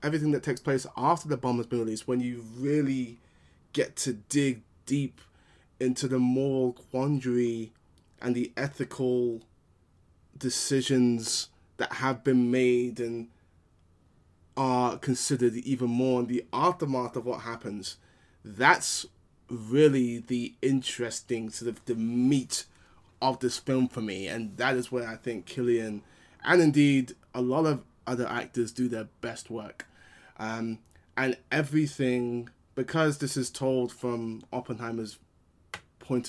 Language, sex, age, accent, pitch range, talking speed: English, male, 20-39, British, 115-135 Hz, 130 wpm